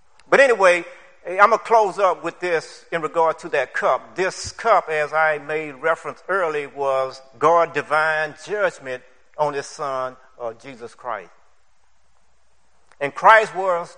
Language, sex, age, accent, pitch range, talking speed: English, male, 60-79, American, 125-170 Hz, 145 wpm